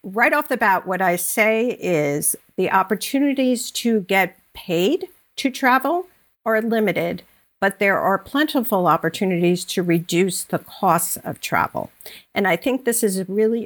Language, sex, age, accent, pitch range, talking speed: English, female, 50-69, American, 180-235 Hz, 150 wpm